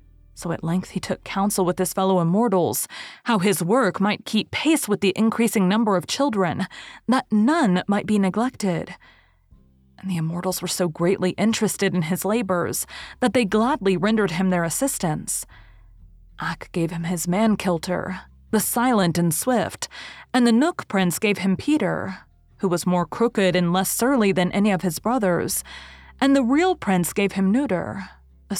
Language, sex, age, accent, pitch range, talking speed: English, female, 30-49, American, 180-225 Hz, 170 wpm